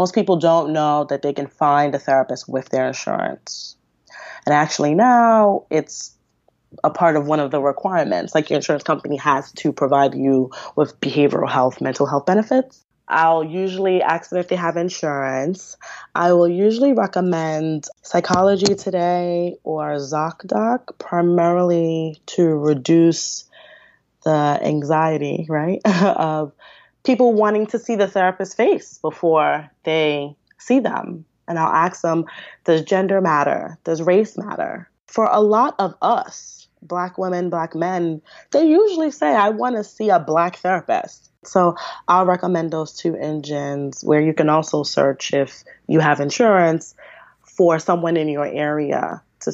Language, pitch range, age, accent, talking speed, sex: English, 150-185 Hz, 20-39, American, 150 wpm, female